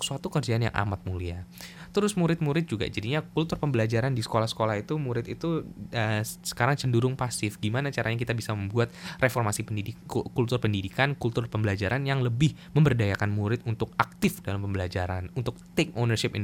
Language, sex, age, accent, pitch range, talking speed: Indonesian, male, 10-29, native, 110-165 Hz, 155 wpm